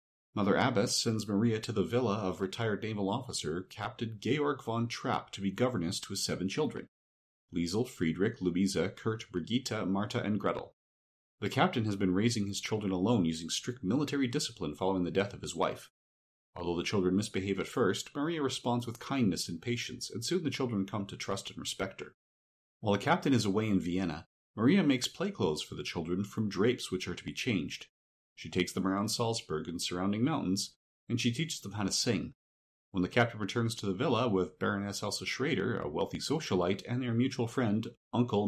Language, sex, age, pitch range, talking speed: English, male, 40-59, 90-120 Hz, 195 wpm